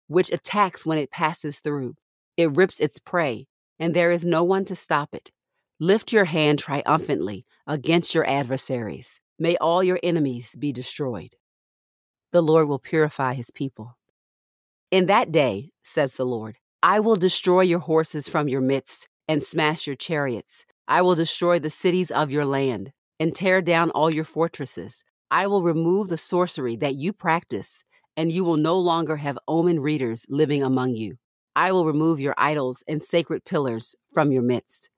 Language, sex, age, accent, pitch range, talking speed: English, female, 40-59, American, 125-170 Hz, 170 wpm